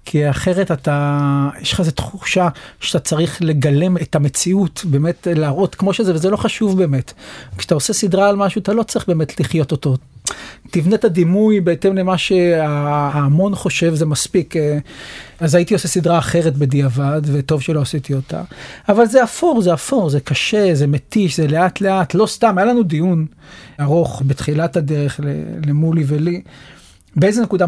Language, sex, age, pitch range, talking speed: Hebrew, male, 40-59, 155-220 Hz, 160 wpm